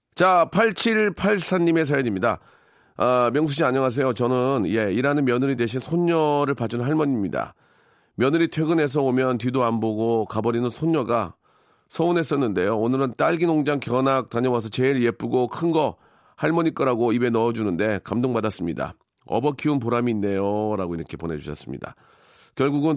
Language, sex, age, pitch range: Korean, male, 40-59, 115-155 Hz